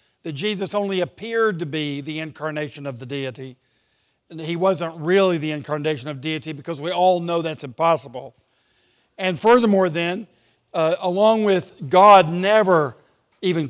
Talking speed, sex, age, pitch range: 150 wpm, male, 50-69, 150-185 Hz